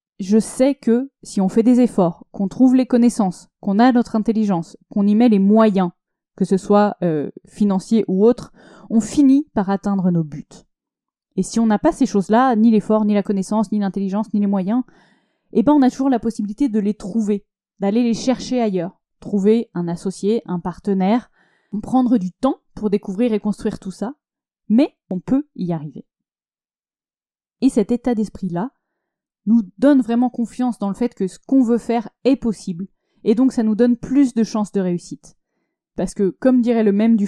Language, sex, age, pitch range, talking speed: French, female, 20-39, 195-235 Hz, 190 wpm